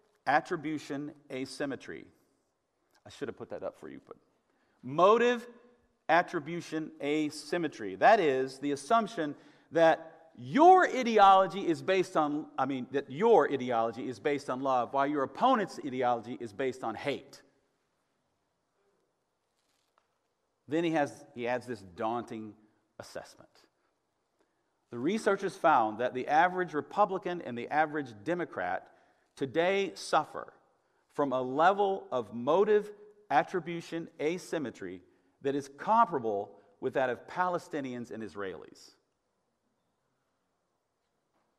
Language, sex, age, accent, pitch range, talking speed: English, male, 50-69, American, 130-180 Hz, 115 wpm